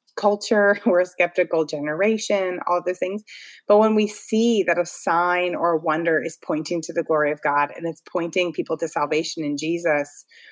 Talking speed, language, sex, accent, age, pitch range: 190 wpm, English, female, American, 30-49, 160-210 Hz